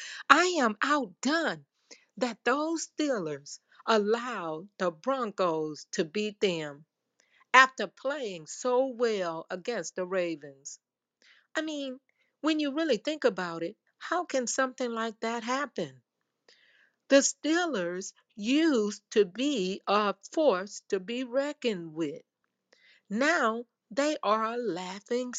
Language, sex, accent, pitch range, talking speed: English, female, American, 180-275 Hz, 115 wpm